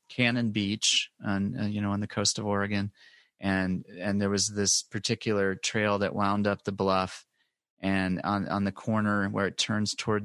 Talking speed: 180 wpm